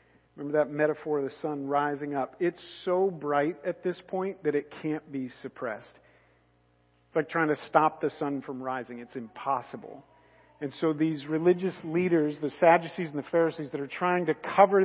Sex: male